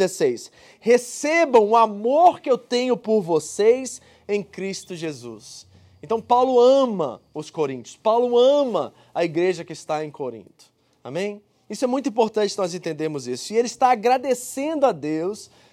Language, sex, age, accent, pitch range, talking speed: Portuguese, male, 20-39, Brazilian, 195-255 Hz, 155 wpm